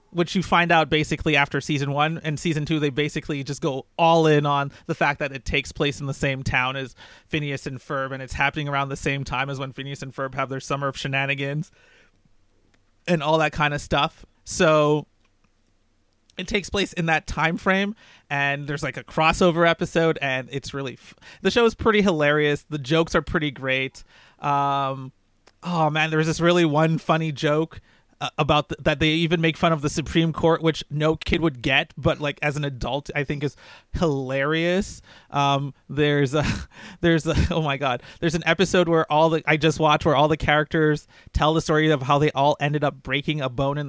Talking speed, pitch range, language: 210 wpm, 140-165 Hz, English